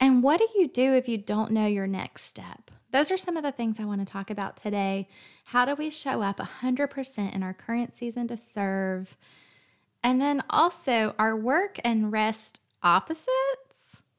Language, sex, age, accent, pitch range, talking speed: English, female, 20-39, American, 195-265 Hz, 185 wpm